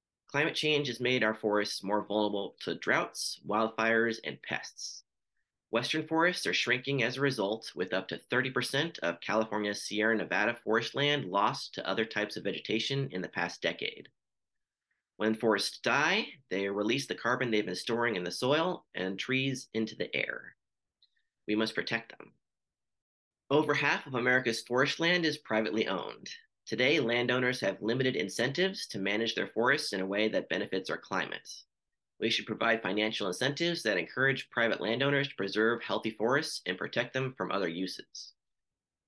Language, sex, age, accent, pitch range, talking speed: English, male, 30-49, American, 105-140 Hz, 165 wpm